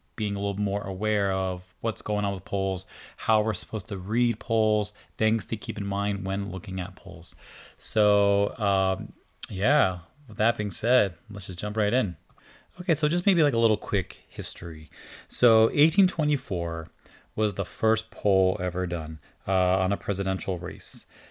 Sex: male